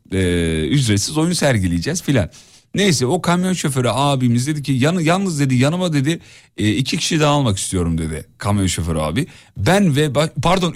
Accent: native